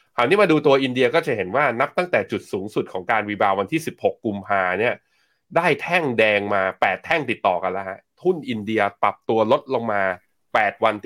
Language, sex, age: Thai, male, 20-39